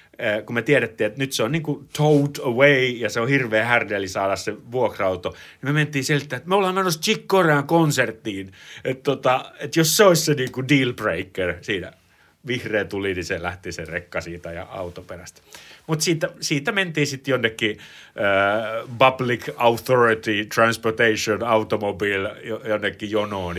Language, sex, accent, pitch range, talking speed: Finnish, male, native, 95-135 Hz, 165 wpm